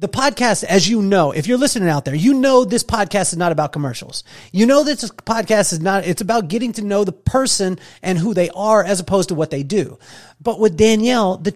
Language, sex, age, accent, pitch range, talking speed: English, male, 40-59, American, 150-220 Hz, 235 wpm